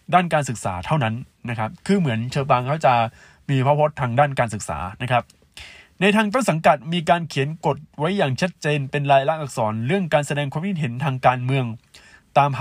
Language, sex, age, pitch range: Thai, male, 20-39, 110-150 Hz